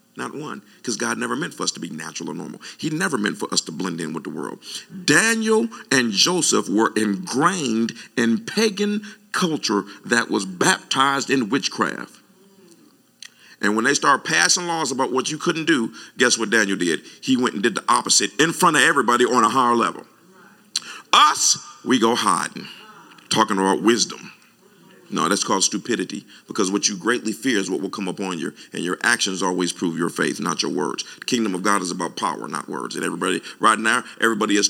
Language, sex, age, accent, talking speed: English, male, 50-69, American, 195 wpm